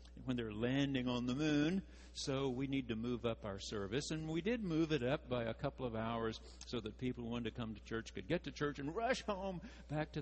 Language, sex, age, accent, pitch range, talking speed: English, male, 60-79, American, 85-130 Hz, 255 wpm